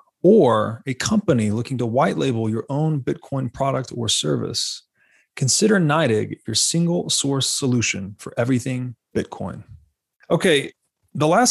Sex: male